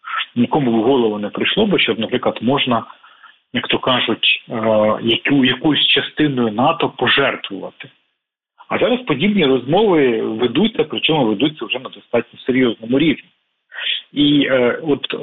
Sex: male